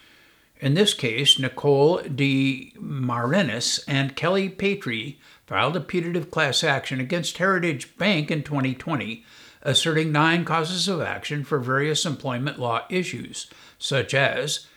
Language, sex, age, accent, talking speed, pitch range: English, male, 60-79, American, 120 wpm, 130-170 Hz